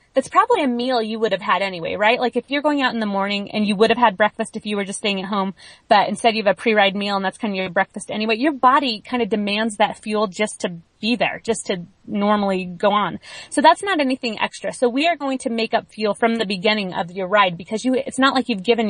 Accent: American